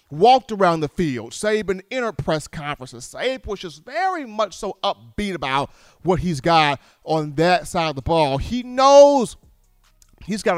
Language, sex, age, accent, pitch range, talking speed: English, male, 40-59, American, 145-205 Hz, 165 wpm